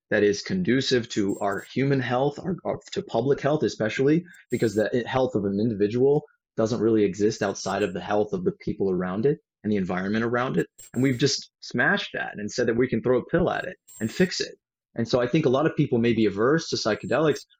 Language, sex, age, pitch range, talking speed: English, male, 30-49, 110-140 Hz, 225 wpm